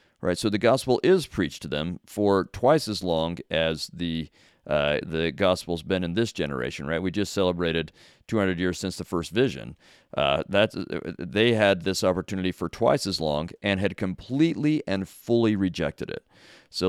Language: English